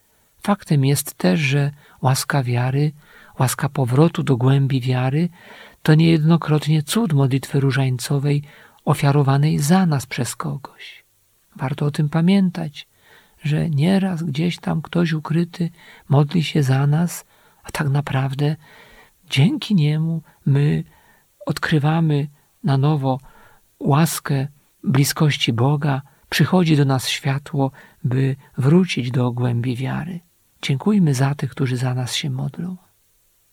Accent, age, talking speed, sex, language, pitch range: native, 50-69, 115 wpm, male, Polish, 135-165 Hz